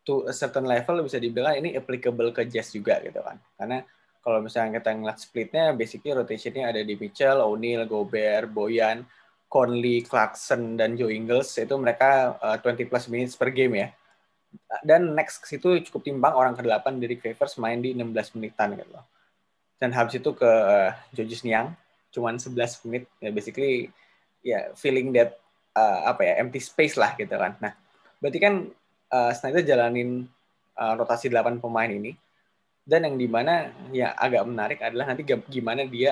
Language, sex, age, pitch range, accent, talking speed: Indonesian, male, 20-39, 115-130 Hz, native, 170 wpm